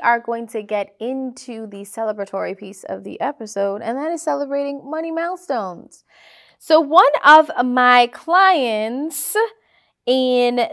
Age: 20-39